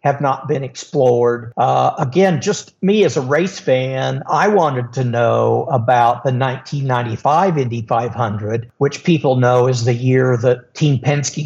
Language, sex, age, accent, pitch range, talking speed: English, male, 50-69, American, 125-150 Hz, 155 wpm